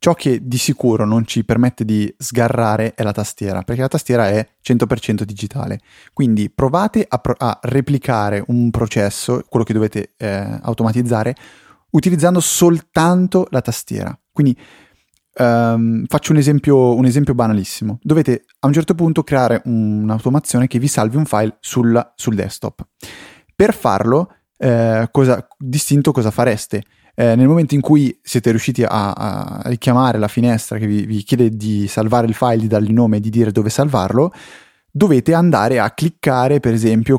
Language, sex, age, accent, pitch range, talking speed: Italian, male, 20-39, native, 110-140 Hz, 155 wpm